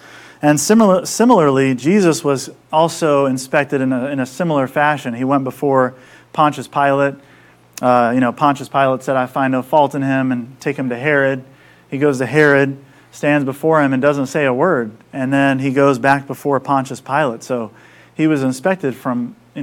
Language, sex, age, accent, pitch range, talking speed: English, male, 40-59, American, 125-150 Hz, 185 wpm